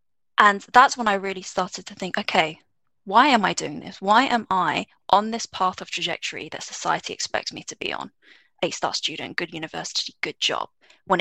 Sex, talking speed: female, 200 wpm